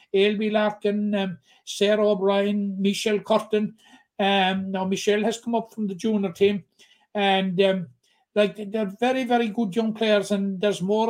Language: English